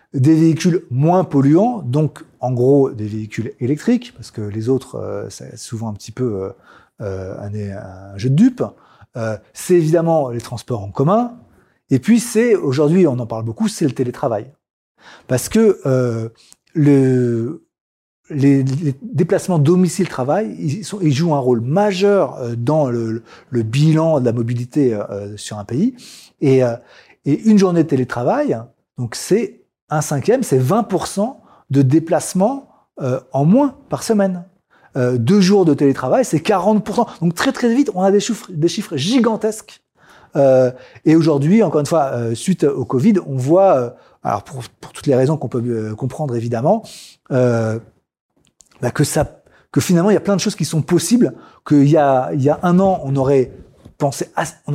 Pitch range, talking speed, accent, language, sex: 125-185 Hz, 165 wpm, French, French, male